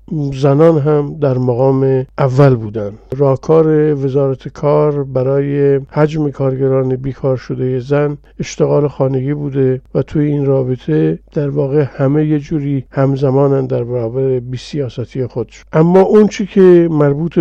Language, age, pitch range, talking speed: Persian, 50-69, 135-160 Hz, 135 wpm